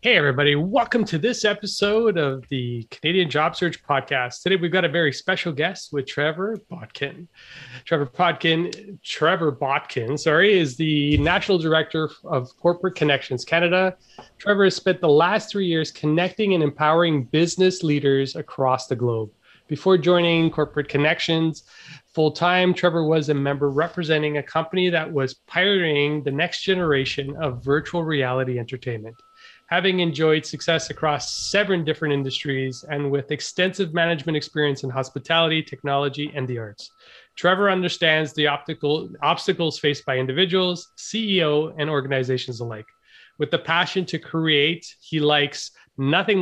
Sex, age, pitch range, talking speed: male, 30-49, 140-175 Hz, 140 wpm